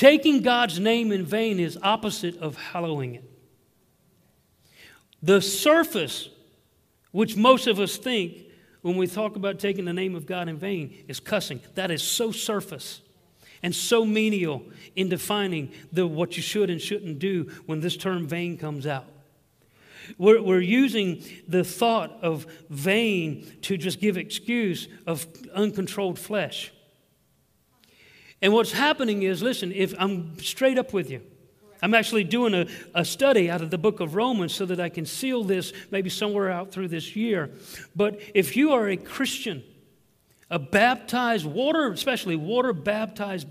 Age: 50-69